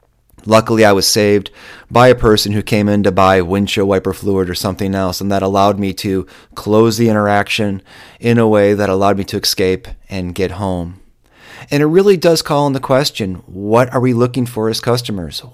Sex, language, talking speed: male, English, 200 wpm